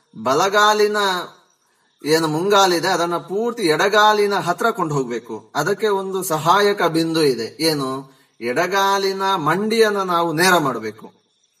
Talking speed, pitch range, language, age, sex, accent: 105 wpm, 155-195 Hz, Kannada, 30-49, male, native